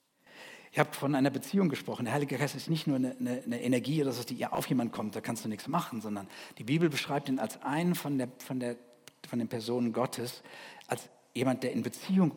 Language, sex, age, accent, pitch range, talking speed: German, male, 50-69, German, 120-160 Hz, 225 wpm